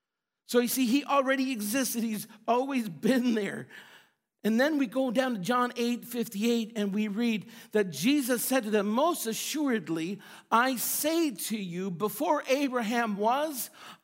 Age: 50-69